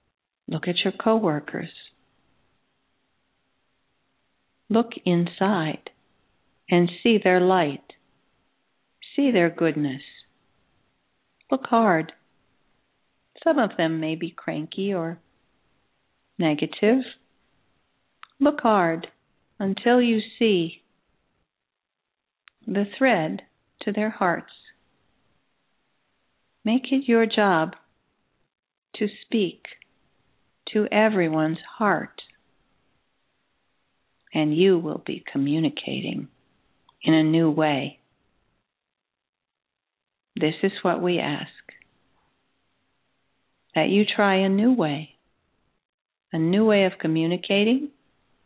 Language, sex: English, female